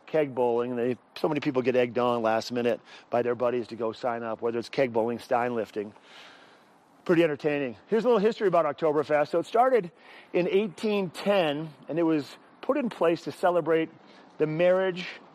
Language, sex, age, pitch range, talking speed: English, male, 40-59, 135-170 Hz, 180 wpm